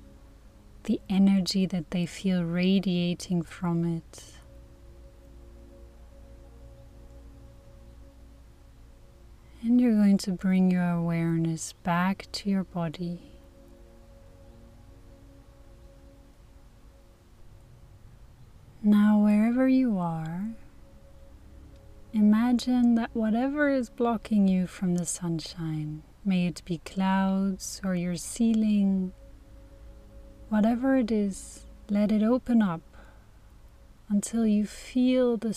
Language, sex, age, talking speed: English, female, 30-49, 85 wpm